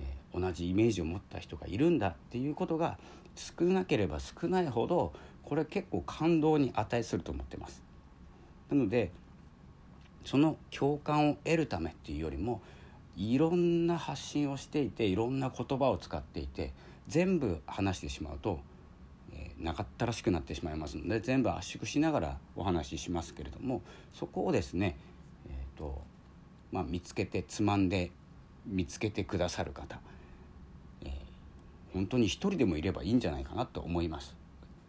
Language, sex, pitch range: Japanese, male, 75-110 Hz